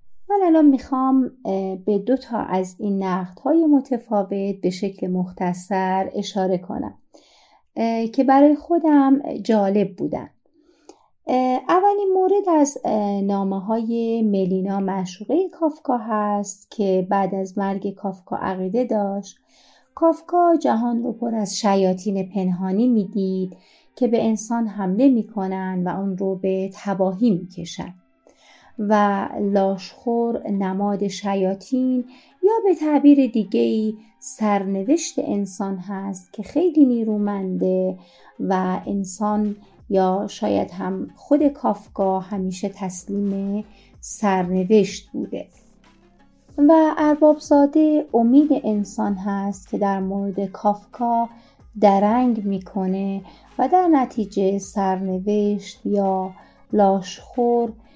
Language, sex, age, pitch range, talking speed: Persian, female, 30-49, 195-255 Hz, 100 wpm